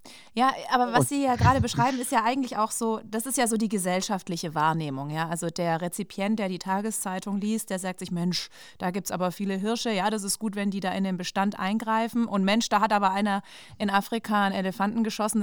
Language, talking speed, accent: German, 230 wpm, German